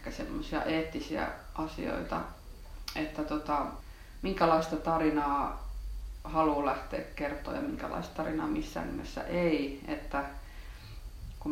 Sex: female